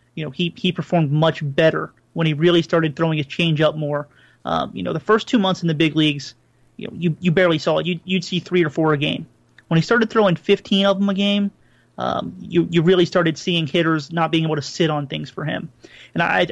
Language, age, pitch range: English, 30-49, 155-180 Hz